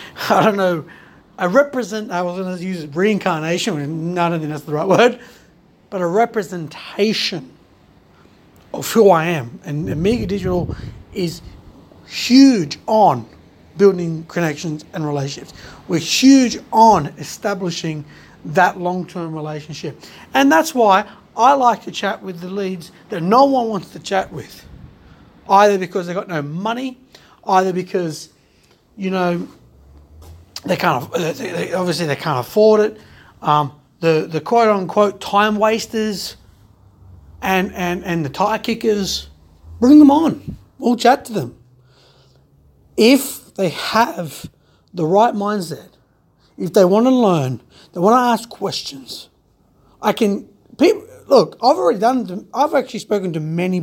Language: English